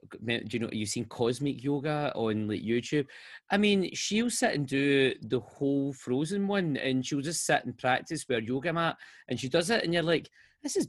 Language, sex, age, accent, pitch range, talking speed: English, male, 20-39, British, 120-170 Hz, 210 wpm